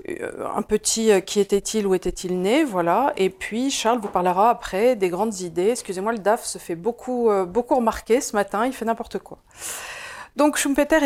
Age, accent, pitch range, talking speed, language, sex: 40-59, French, 195-240 Hz, 185 wpm, French, female